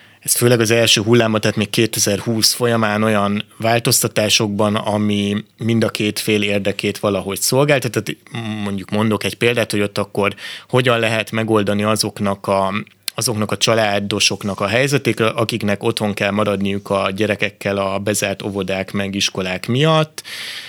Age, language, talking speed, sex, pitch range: 30-49, Hungarian, 140 wpm, male, 100-115 Hz